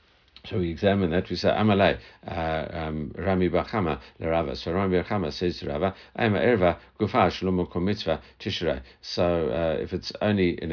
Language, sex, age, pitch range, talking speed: English, male, 60-79, 80-95 Hz, 100 wpm